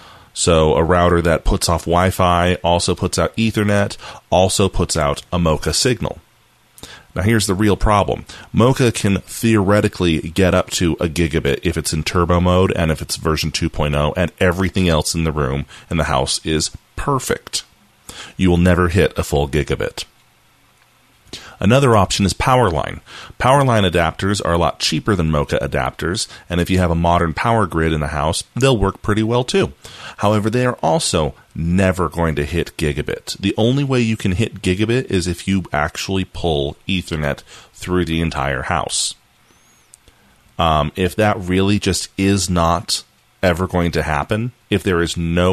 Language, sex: English, male